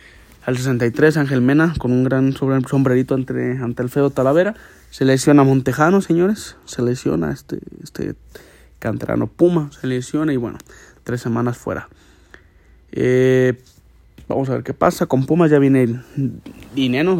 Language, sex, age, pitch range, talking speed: Spanish, male, 30-49, 120-135 Hz, 140 wpm